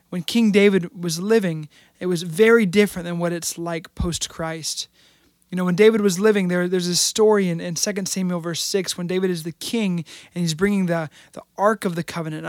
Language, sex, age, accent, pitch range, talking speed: English, male, 20-39, American, 170-200 Hz, 210 wpm